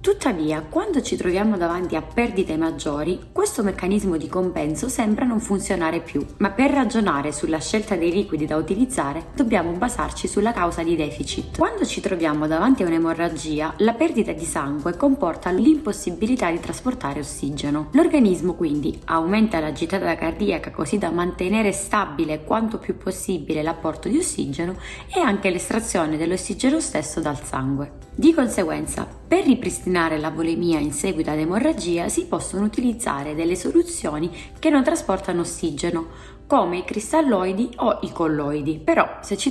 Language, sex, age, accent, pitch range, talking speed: Italian, female, 20-39, native, 160-235 Hz, 145 wpm